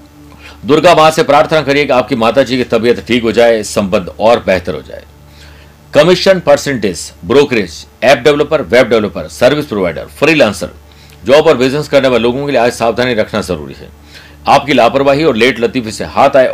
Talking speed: 180 wpm